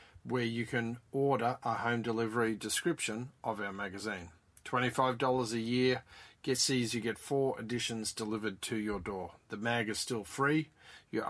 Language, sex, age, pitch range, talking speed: English, male, 40-59, 105-135 Hz, 160 wpm